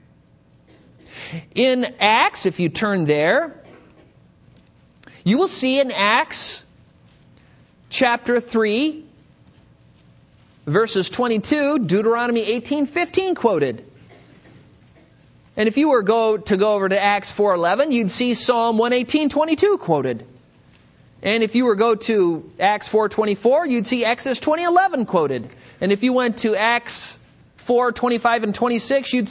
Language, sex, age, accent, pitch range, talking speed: English, male, 40-59, American, 215-275 Hz, 120 wpm